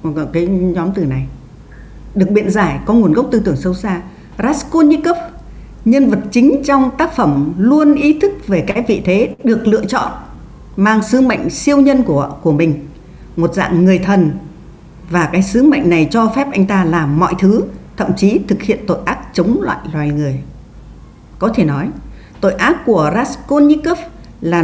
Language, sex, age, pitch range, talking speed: English, female, 60-79, 170-250 Hz, 180 wpm